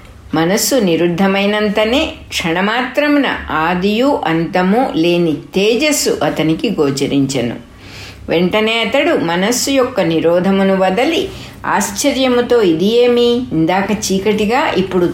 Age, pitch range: 60-79, 170-245 Hz